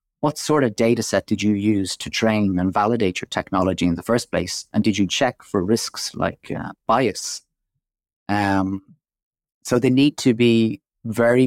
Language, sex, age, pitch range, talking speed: English, male, 30-49, 95-115 Hz, 180 wpm